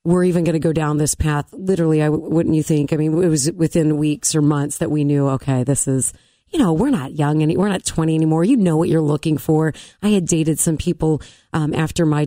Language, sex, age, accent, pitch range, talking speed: English, female, 30-49, American, 155-185 Hz, 250 wpm